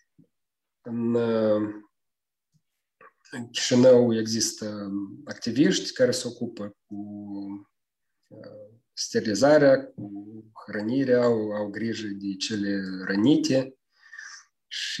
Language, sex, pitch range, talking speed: Romanian, male, 105-120 Hz, 70 wpm